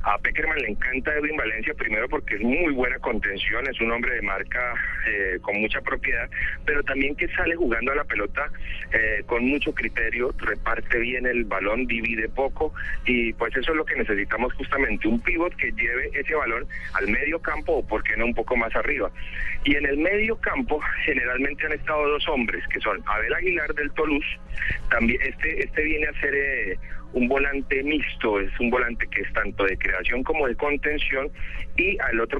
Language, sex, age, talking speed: Spanish, male, 40-59, 195 wpm